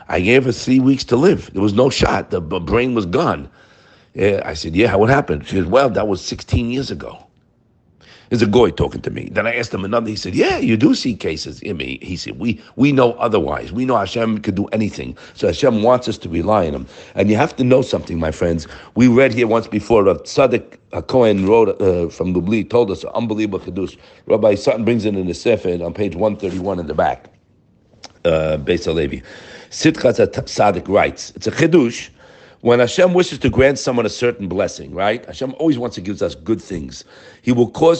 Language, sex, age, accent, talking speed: English, male, 60-79, American, 220 wpm